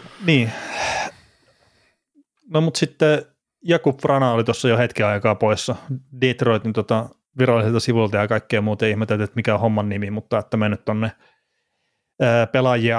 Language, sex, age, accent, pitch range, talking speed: Finnish, male, 30-49, native, 110-125 Hz, 140 wpm